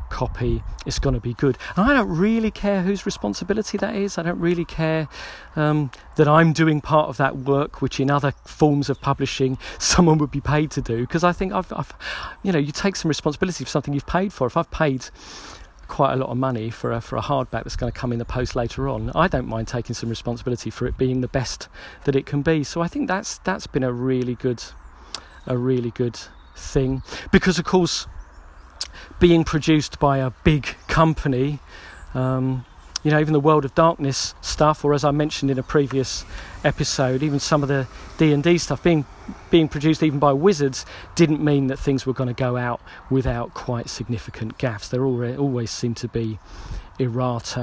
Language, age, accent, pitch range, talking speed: English, 40-59, British, 120-155 Hz, 205 wpm